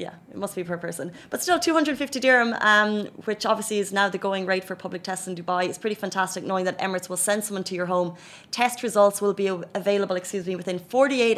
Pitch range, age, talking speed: 180-210 Hz, 20-39, 230 wpm